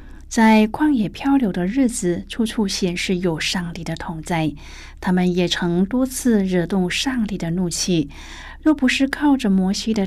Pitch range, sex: 175-240 Hz, female